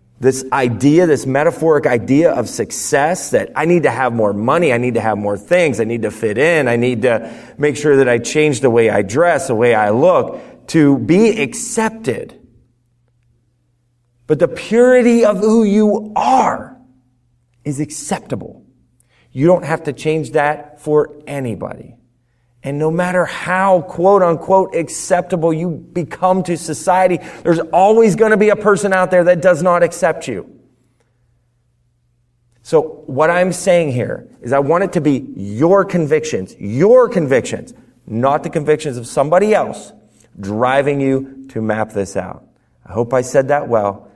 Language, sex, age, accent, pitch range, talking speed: English, male, 30-49, American, 120-170 Hz, 160 wpm